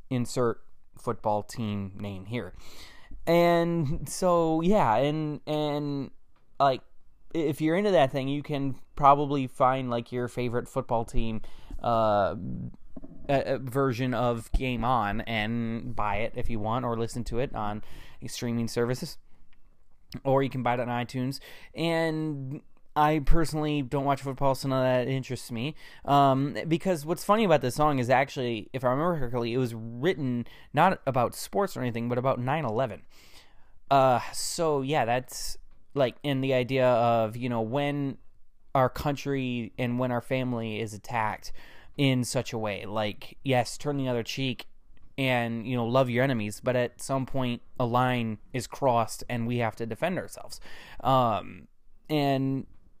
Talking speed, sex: 155 wpm, male